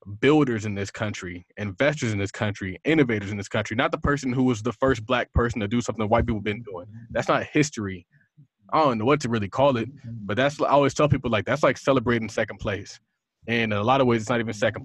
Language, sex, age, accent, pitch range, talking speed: English, male, 20-39, American, 110-135 Hz, 250 wpm